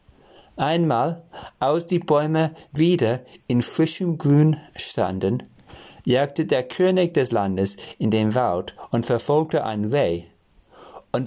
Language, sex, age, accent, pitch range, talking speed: German, male, 40-59, German, 115-170 Hz, 115 wpm